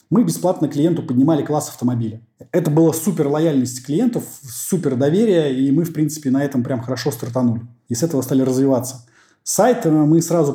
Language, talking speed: Russian, 170 wpm